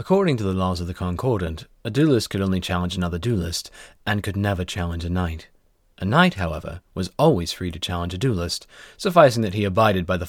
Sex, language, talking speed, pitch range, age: male, English, 210 wpm, 90-110 Hz, 30-49